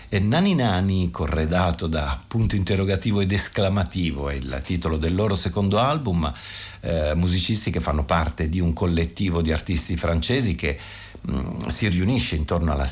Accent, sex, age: native, male, 50-69